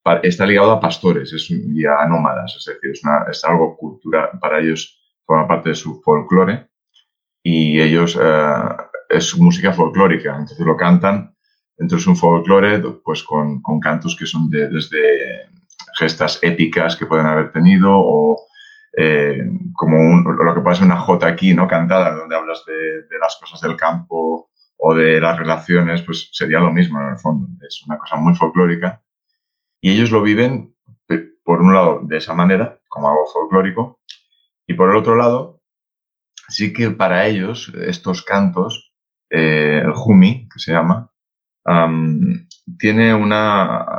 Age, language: 30-49, Spanish